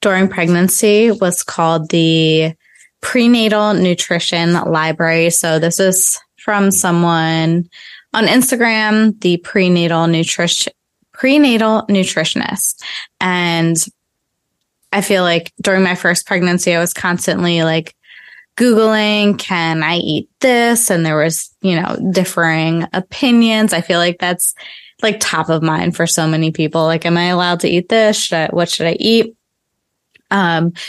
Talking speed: 130 wpm